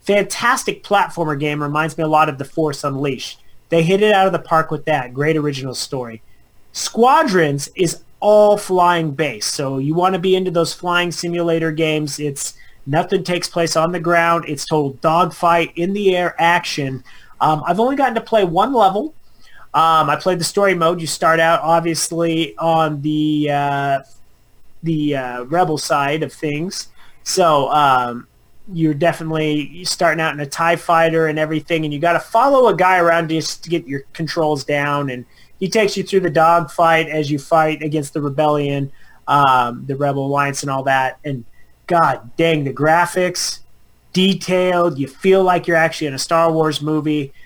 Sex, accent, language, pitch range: male, American, English, 150-175 Hz